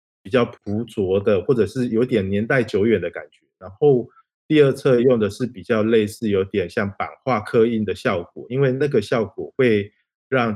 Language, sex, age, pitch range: Chinese, male, 20-39, 105-125 Hz